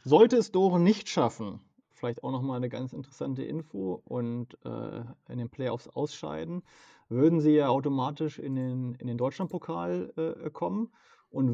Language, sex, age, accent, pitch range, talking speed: German, male, 40-59, German, 130-175 Hz, 155 wpm